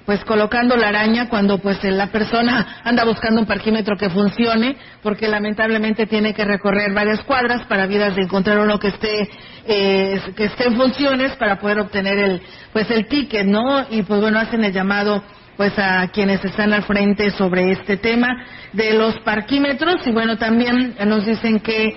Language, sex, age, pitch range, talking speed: Spanish, female, 40-59, 195-230 Hz, 180 wpm